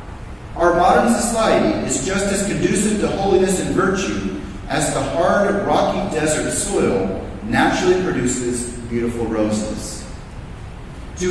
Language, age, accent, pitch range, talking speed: English, 40-59, American, 125-185 Hz, 115 wpm